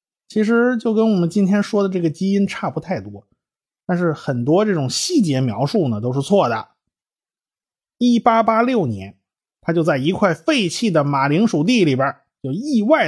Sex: male